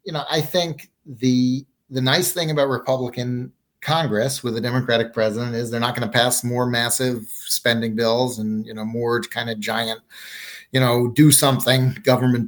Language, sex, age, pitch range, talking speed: English, male, 40-59, 115-130 Hz, 180 wpm